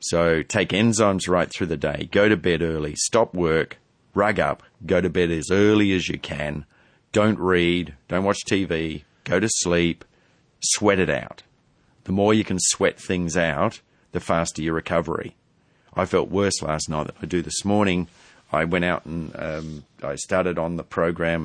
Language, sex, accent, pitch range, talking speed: English, male, Australian, 80-95 Hz, 180 wpm